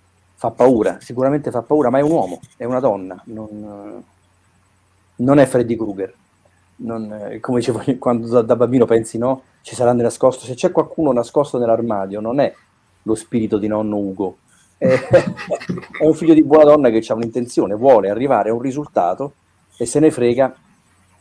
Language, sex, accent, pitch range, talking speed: Italian, male, native, 100-130 Hz, 165 wpm